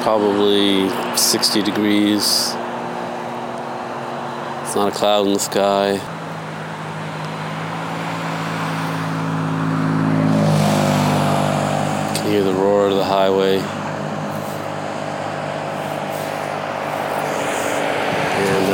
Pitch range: 95-110 Hz